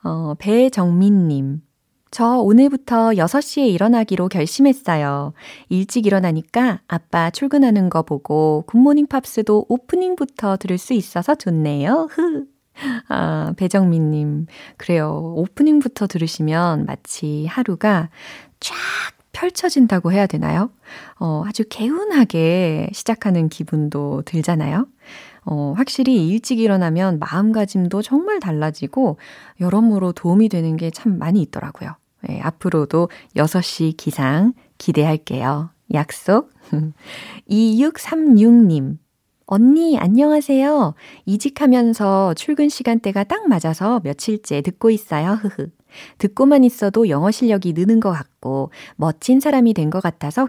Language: Korean